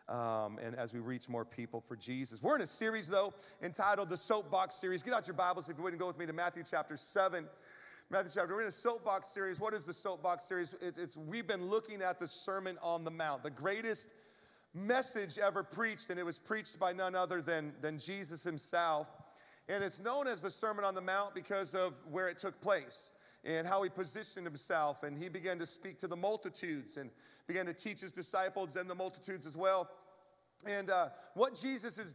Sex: male